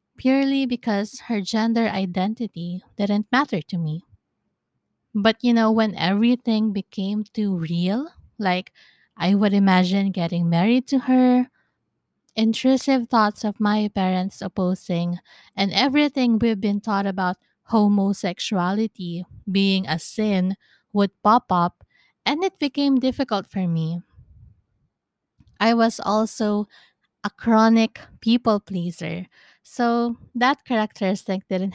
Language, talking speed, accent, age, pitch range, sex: English, 115 wpm, Filipino, 20-39, 185-230 Hz, female